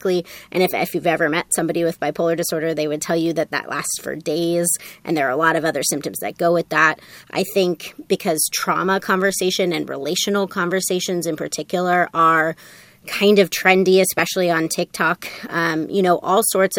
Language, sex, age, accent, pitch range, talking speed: English, female, 30-49, American, 170-195 Hz, 190 wpm